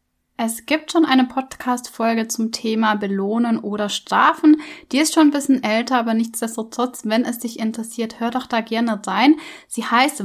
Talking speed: 170 wpm